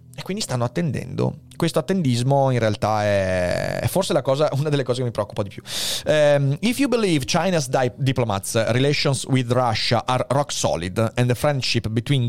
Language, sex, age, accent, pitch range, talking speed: Italian, male, 30-49, native, 120-155 Hz, 160 wpm